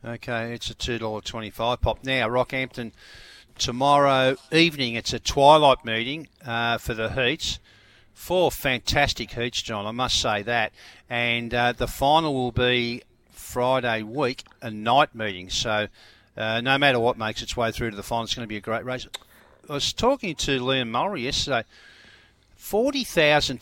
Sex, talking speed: male, 160 wpm